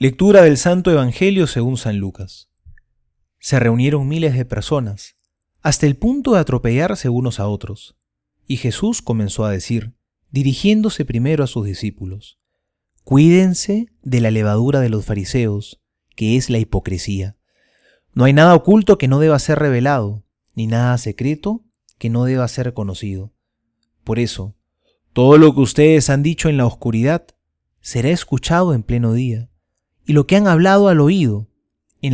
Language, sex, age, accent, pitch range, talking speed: Spanish, male, 30-49, Argentinian, 110-155 Hz, 155 wpm